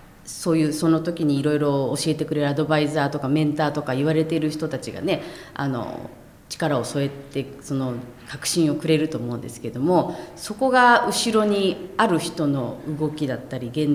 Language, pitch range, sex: Japanese, 140-175 Hz, female